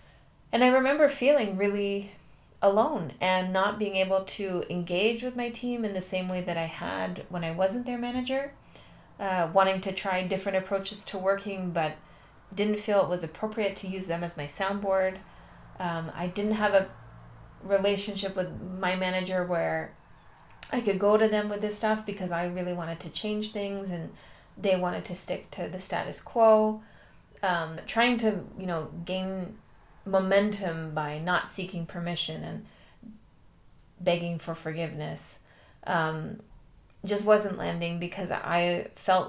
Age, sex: 30-49, female